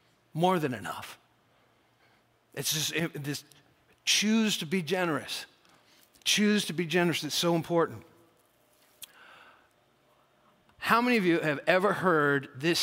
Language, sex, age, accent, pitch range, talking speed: English, male, 50-69, American, 145-195 Hz, 120 wpm